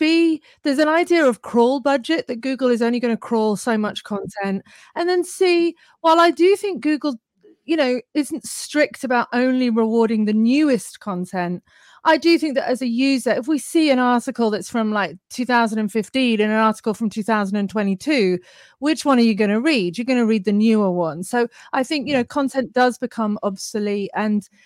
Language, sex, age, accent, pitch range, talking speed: English, female, 30-49, British, 215-285 Hz, 195 wpm